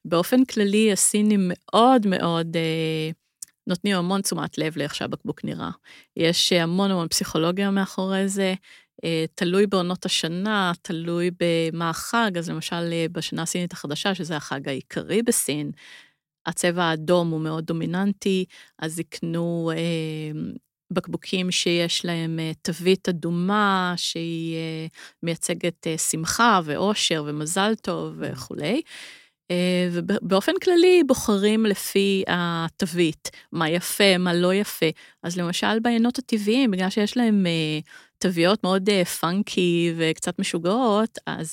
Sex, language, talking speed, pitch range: female, Hebrew, 120 wpm, 165-200 Hz